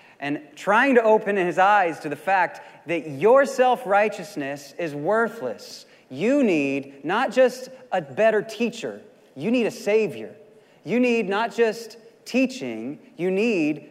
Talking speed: 140 wpm